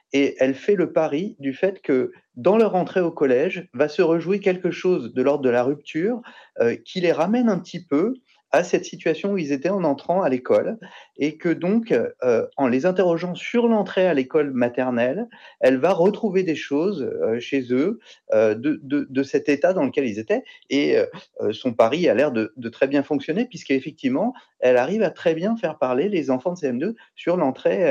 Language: French